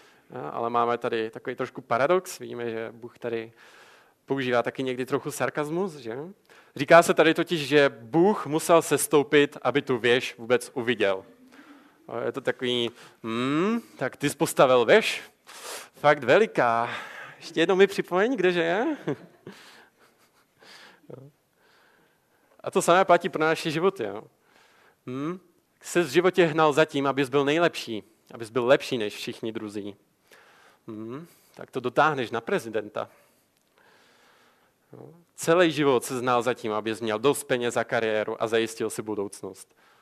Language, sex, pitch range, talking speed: Czech, male, 120-165 Hz, 140 wpm